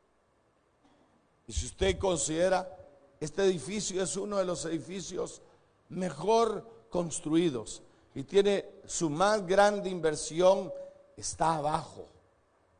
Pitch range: 140-185 Hz